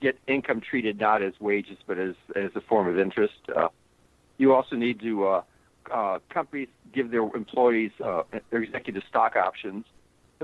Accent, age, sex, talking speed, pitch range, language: American, 60-79, male, 170 wpm, 105-135 Hz, English